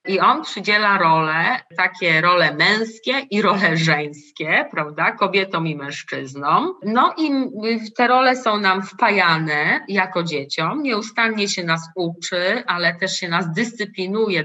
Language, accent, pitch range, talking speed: Polish, native, 180-235 Hz, 135 wpm